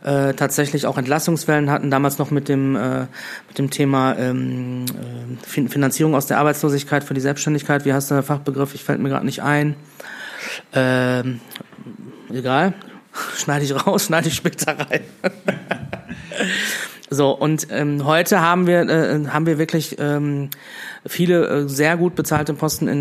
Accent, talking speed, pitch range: German, 140 wpm, 140-170 Hz